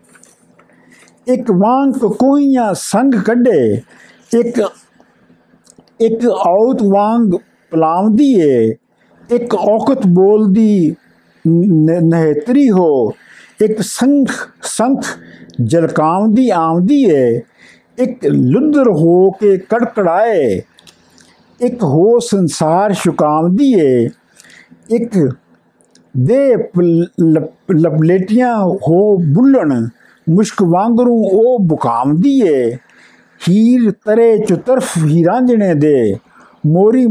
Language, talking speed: Punjabi, 85 wpm